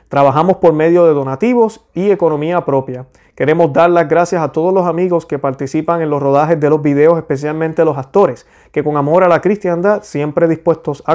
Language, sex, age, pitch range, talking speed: Spanish, male, 30-49, 140-170 Hz, 195 wpm